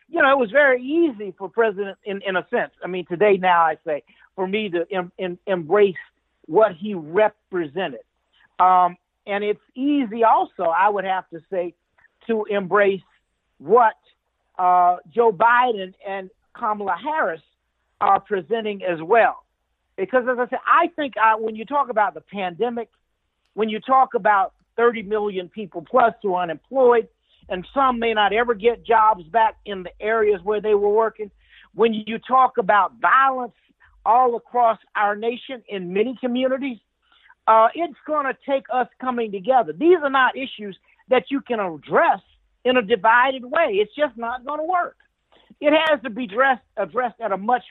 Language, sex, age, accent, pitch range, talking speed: English, male, 50-69, American, 195-255 Hz, 165 wpm